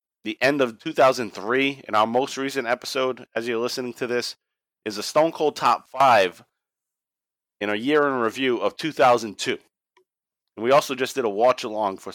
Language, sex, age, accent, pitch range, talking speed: English, male, 30-49, American, 100-125 Hz, 180 wpm